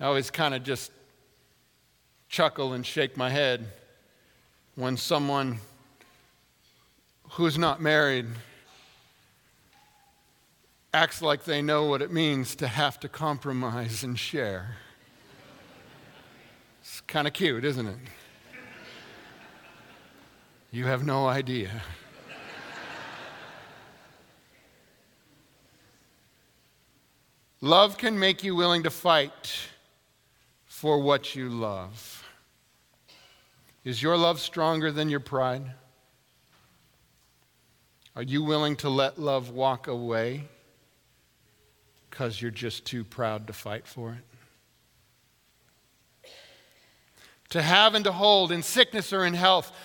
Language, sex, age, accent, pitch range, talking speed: English, male, 50-69, American, 120-170 Hz, 100 wpm